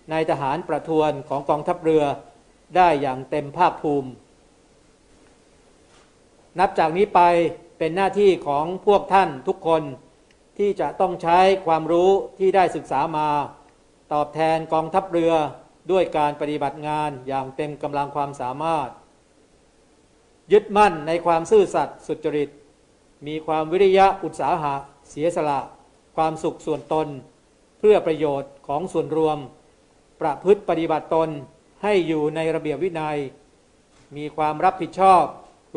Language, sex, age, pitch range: Thai, male, 60-79, 150-180 Hz